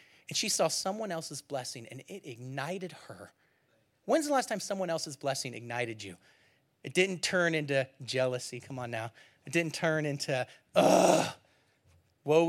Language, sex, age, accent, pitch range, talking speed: English, male, 30-49, American, 165-245 Hz, 160 wpm